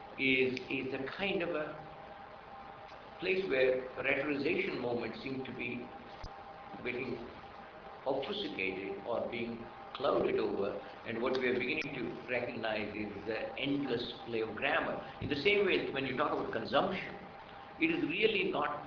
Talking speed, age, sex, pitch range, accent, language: 145 wpm, 60-79, male, 125-205 Hz, Indian, French